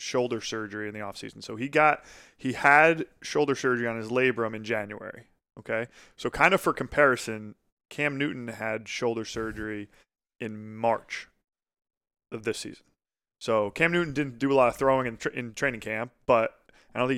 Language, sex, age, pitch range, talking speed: English, male, 20-39, 110-135 Hz, 180 wpm